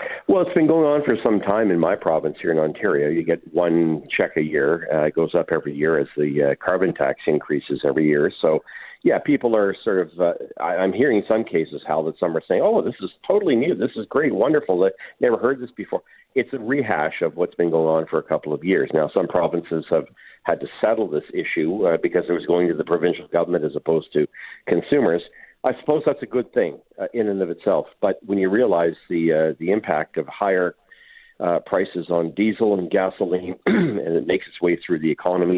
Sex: male